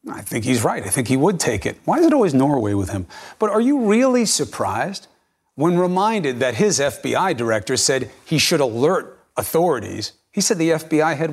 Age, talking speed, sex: 40-59, 200 wpm, male